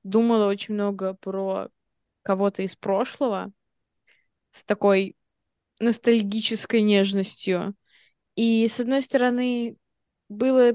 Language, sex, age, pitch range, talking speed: Russian, female, 20-39, 200-255 Hz, 90 wpm